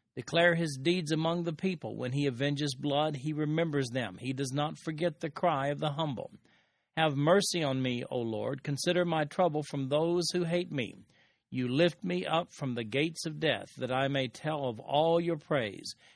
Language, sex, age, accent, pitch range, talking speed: English, male, 50-69, American, 135-165 Hz, 195 wpm